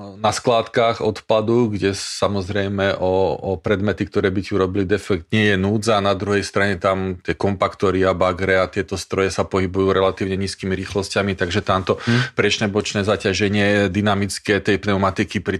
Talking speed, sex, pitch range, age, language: 160 wpm, male, 95-105 Hz, 40-59, Slovak